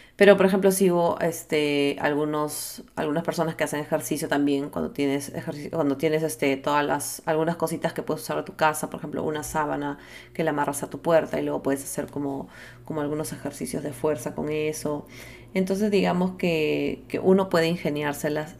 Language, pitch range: English, 140-160 Hz